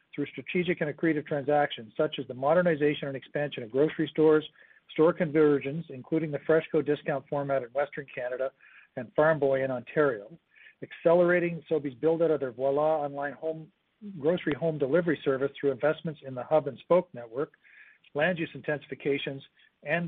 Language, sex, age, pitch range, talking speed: English, male, 50-69, 140-160 Hz, 155 wpm